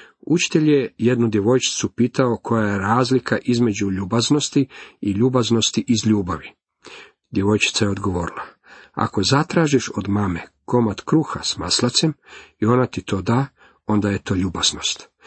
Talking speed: 135 wpm